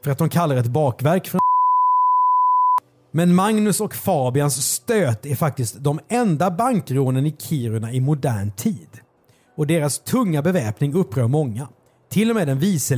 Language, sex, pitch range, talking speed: Swedish, male, 125-195 Hz, 155 wpm